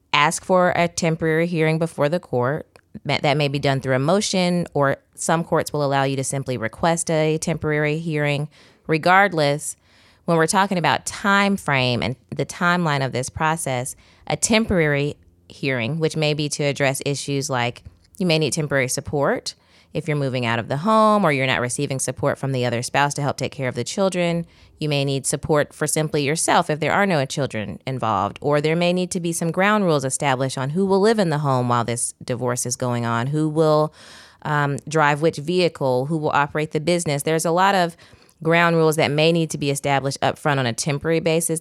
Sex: female